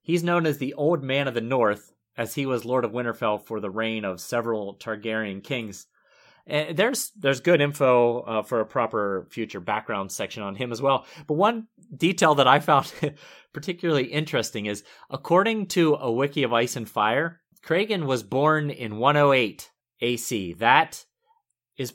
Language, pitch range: English, 115-170 Hz